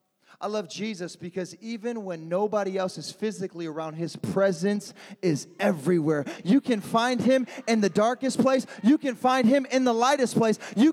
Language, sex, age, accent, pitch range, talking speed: English, male, 20-39, American, 195-260 Hz, 175 wpm